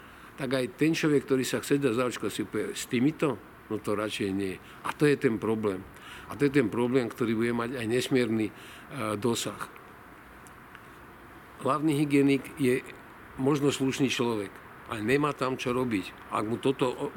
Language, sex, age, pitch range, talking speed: Slovak, male, 50-69, 115-140 Hz, 165 wpm